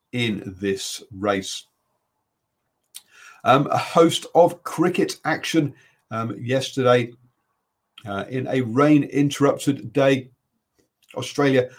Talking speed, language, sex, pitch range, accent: 90 wpm, English, male, 105-135 Hz, British